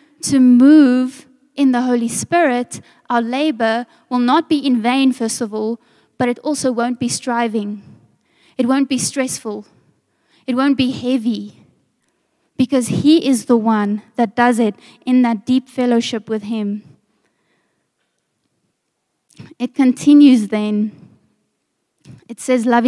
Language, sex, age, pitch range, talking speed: English, female, 20-39, 225-260 Hz, 130 wpm